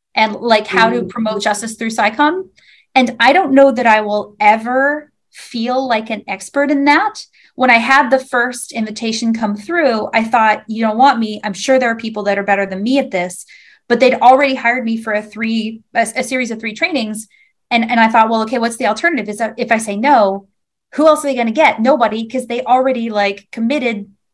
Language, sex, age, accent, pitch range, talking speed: English, female, 20-39, American, 215-265 Hz, 220 wpm